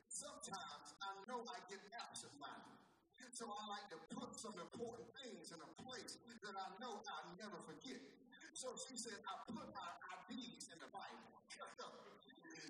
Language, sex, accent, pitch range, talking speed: English, male, American, 195-250 Hz, 160 wpm